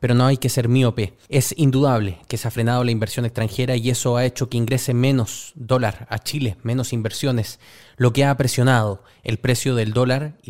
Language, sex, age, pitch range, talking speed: Spanish, male, 20-39, 115-140 Hz, 205 wpm